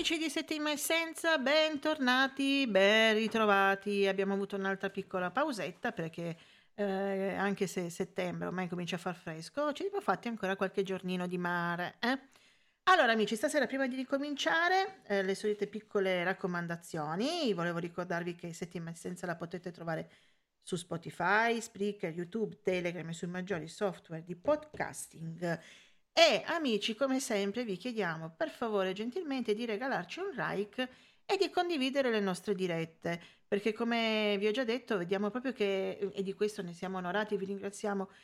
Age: 40-59